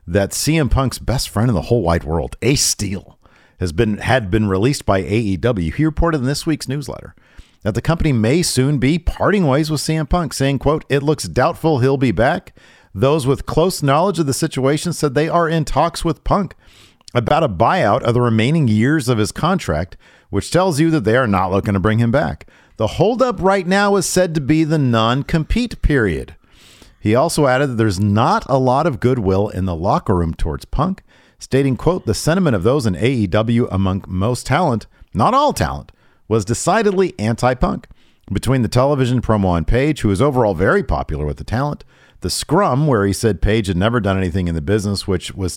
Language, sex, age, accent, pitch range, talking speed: English, male, 50-69, American, 95-140 Hz, 200 wpm